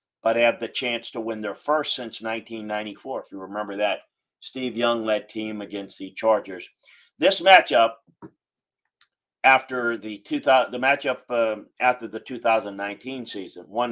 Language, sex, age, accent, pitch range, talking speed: English, male, 50-69, American, 110-125 Hz, 145 wpm